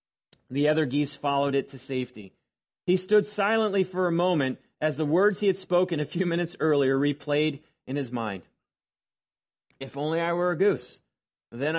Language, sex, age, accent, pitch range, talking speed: English, male, 40-59, American, 140-185 Hz, 175 wpm